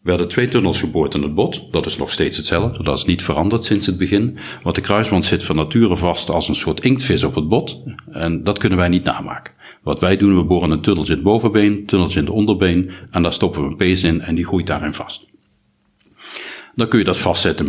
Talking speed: 240 wpm